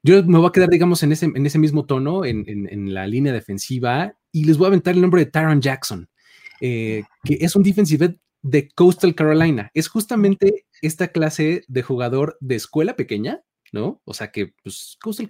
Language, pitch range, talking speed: Spanish, 125-175 Hz, 200 wpm